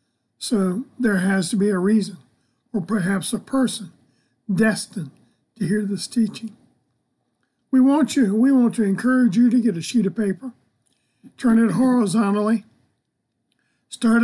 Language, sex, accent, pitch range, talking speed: English, male, American, 190-235 Hz, 145 wpm